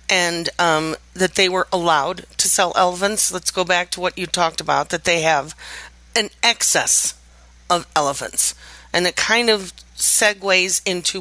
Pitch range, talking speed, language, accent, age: 155-190 Hz, 160 wpm, English, American, 40-59